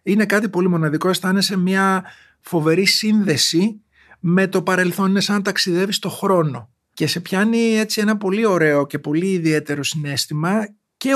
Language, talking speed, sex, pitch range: Greek, 155 wpm, male, 155-190 Hz